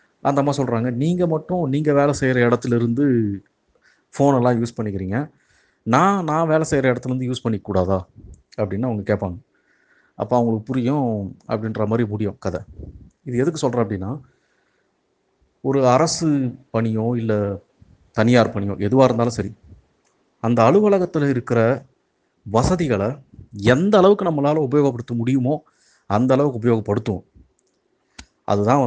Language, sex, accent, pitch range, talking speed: Tamil, male, native, 105-130 Hz, 110 wpm